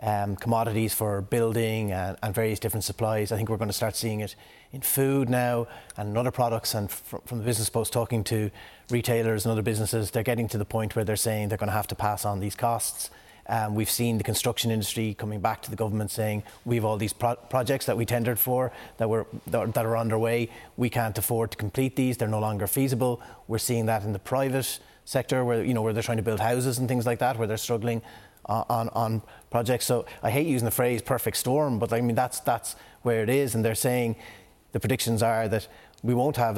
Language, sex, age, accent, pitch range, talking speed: English, male, 30-49, Irish, 110-120 Hz, 235 wpm